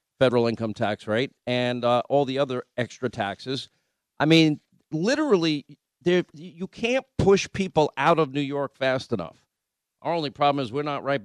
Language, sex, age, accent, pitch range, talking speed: English, male, 50-69, American, 125-160 Hz, 165 wpm